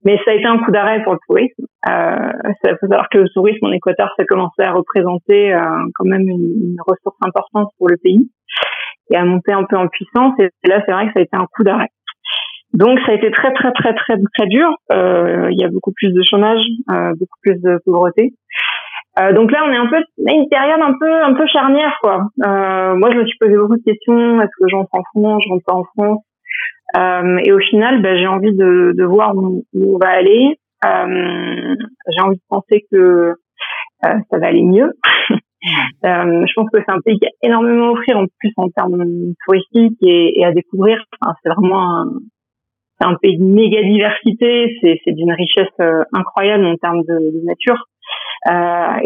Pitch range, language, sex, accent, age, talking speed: 185-230 Hz, French, female, French, 30-49, 215 wpm